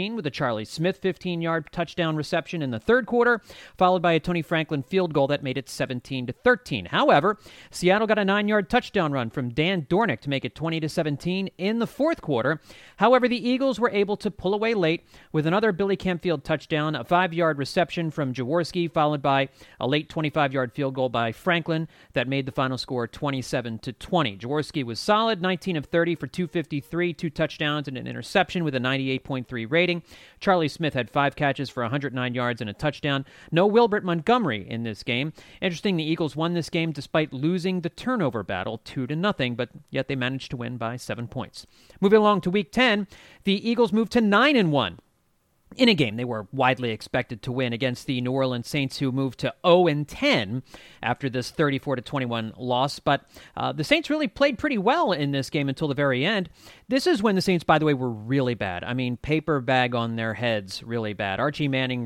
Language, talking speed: English, 195 wpm